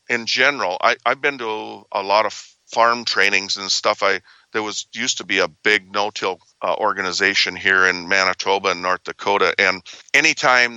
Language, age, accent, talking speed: English, 50-69, American, 185 wpm